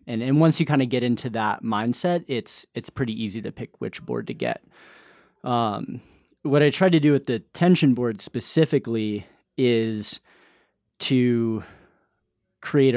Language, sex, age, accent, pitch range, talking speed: English, male, 30-49, American, 110-130 Hz, 155 wpm